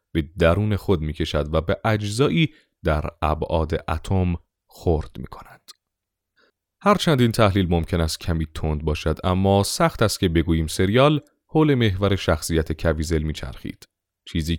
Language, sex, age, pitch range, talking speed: Persian, male, 30-49, 80-110 Hz, 130 wpm